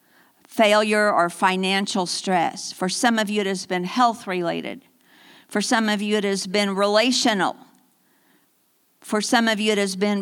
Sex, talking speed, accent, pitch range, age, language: female, 165 wpm, American, 185-225 Hz, 50-69, English